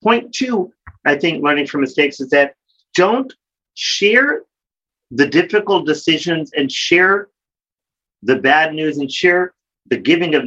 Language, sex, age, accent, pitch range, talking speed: English, male, 40-59, American, 135-175 Hz, 140 wpm